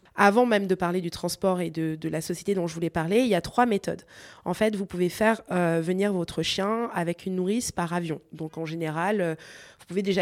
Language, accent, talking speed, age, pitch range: French, French, 240 wpm, 20-39, 175-205 Hz